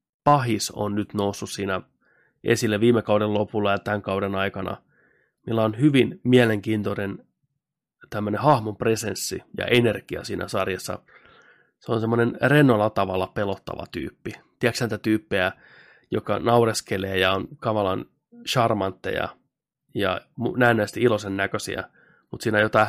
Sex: male